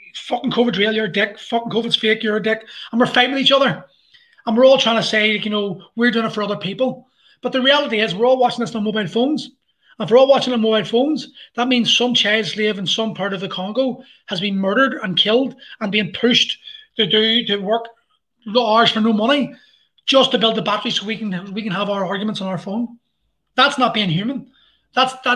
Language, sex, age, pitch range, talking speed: English, male, 20-39, 205-255 Hz, 240 wpm